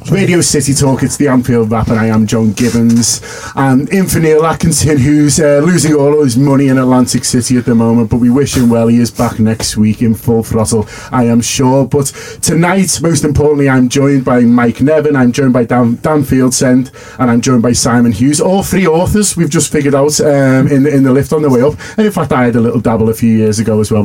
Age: 30-49